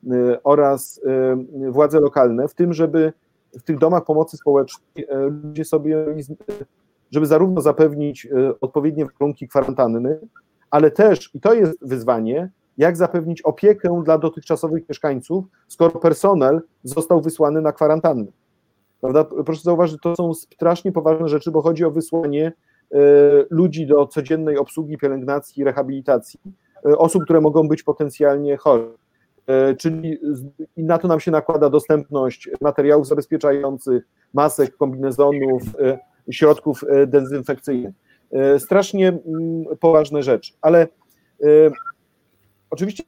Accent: native